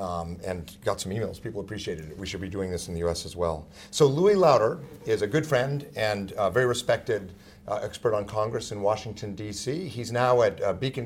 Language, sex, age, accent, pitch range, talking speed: English, male, 50-69, American, 100-120 Hz, 220 wpm